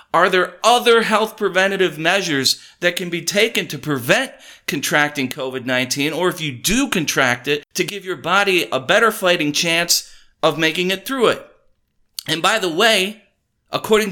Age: 40-59